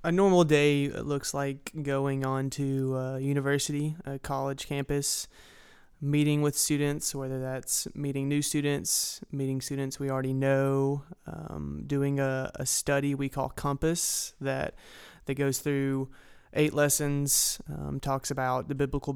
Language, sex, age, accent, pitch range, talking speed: English, male, 20-39, American, 130-145 Hz, 140 wpm